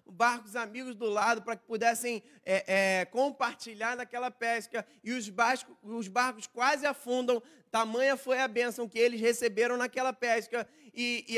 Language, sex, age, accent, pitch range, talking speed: Portuguese, male, 20-39, Brazilian, 215-255 Hz, 140 wpm